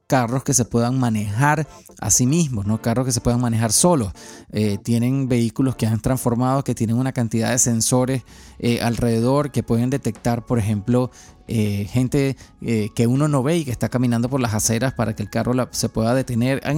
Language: English